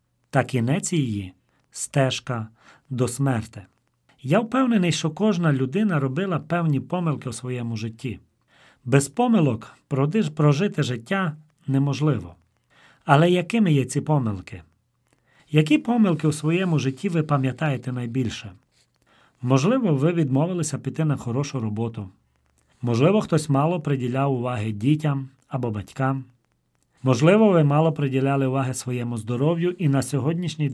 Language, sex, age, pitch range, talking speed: Ukrainian, male, 40-59, 125-165 Hz, 120 wpm